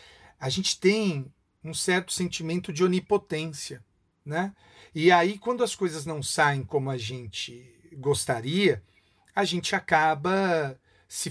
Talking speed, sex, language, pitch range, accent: 125 wpm, male, Portuguese, 130-210 Hz, Brazilian